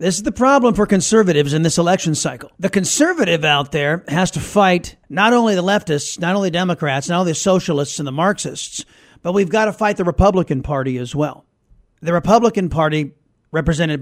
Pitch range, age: 170-245 Hz, 40-59